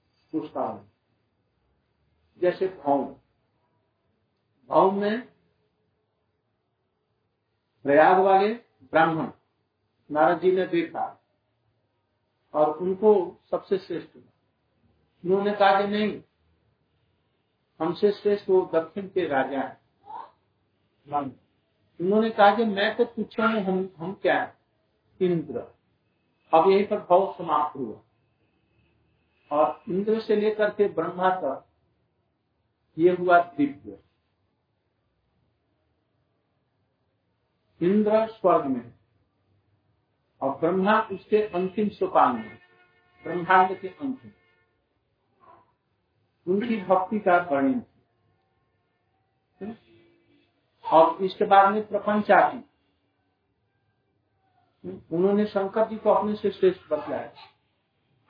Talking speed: 85 wpm